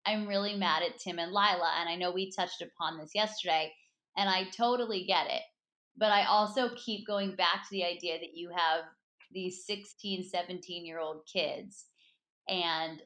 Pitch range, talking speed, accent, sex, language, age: 170-215 Hz, 170 wpm, American, female, English, 20-39